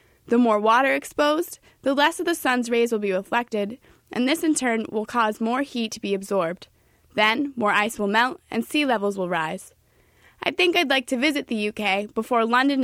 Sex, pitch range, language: female, 210-265 Hz, English